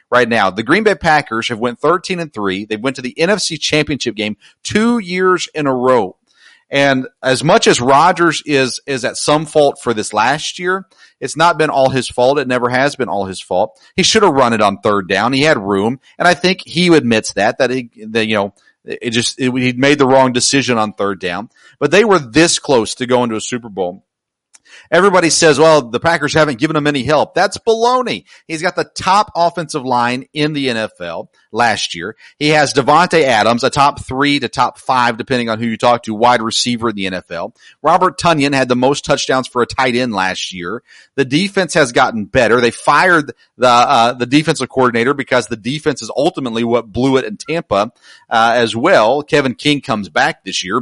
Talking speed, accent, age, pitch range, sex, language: 215 wpm, American, 40-59, 115-155 Hz, male, English